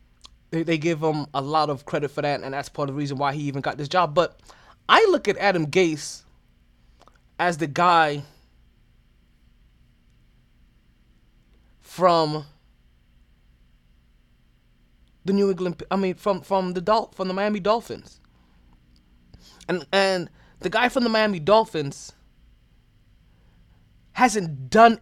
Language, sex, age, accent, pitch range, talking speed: English, male, 20-39, American, 125-205 Hz, 125 wpm